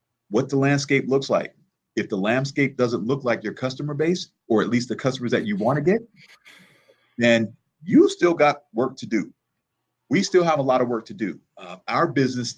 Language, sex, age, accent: English, male, 40-59, American